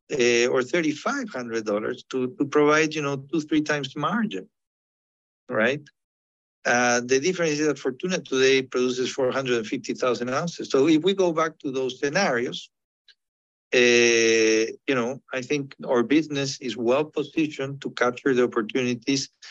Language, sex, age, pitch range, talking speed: English, male, 50-69, 120-155 Hz, 135 wpm